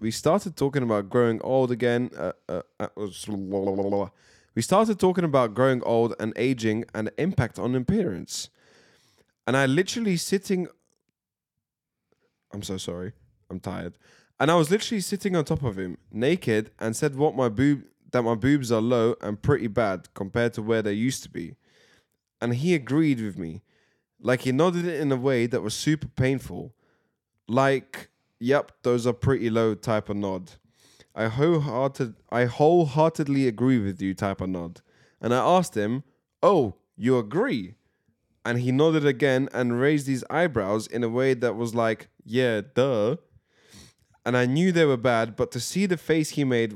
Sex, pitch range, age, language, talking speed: male, 110-145 Hz, 20-39, English, 170 wpm